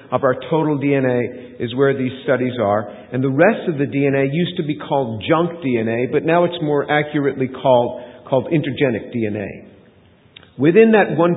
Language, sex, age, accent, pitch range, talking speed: English, male, 50-69, American, 135-175 Hz, 175 wpm